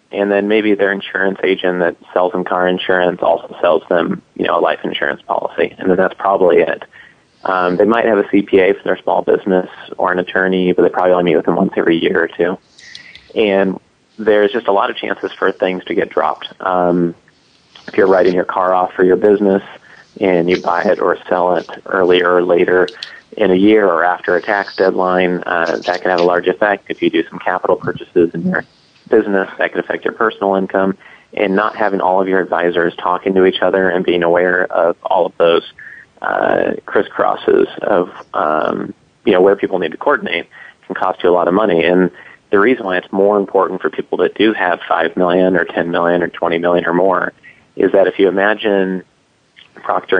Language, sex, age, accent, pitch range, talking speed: English, male, 30-49, American, 90-100 Hz, 210 wpm